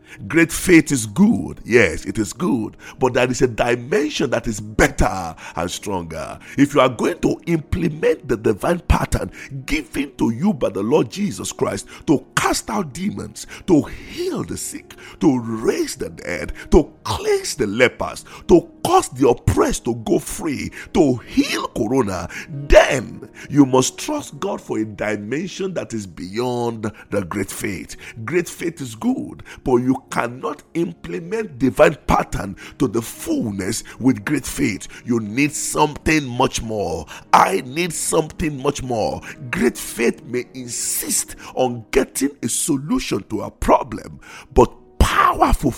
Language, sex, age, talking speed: English, male, 50-69, 150 wpm